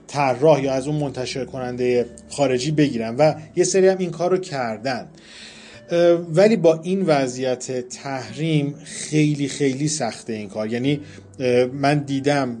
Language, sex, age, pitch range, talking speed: Persian, male, 30-49, 130-165 Hz, 135 wpm